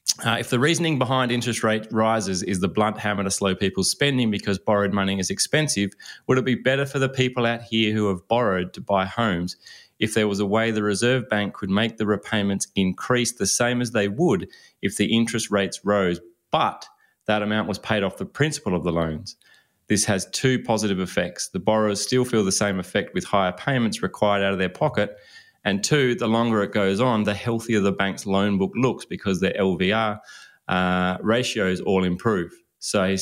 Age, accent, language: 20-39, Australian, English